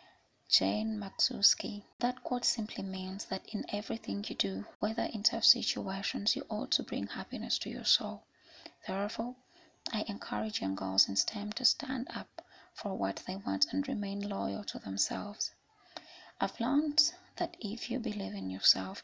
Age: 20-39